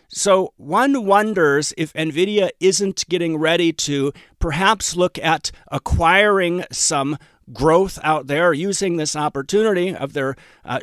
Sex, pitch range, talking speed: male, 145-185 Hz, 125 wpm